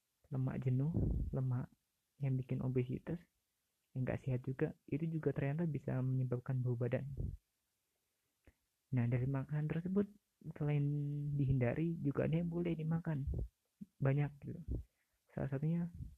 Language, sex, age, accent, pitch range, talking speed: Indonesian, male, 30-49, native, 125-145 Hz, 120 wpm